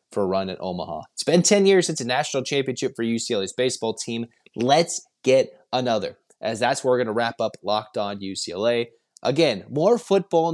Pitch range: 110-135 Hz